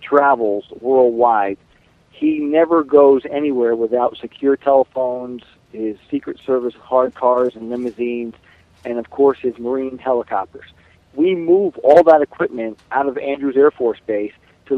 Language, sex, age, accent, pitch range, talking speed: English, male, 50-69, American, 115-145 Hz, 140 wpm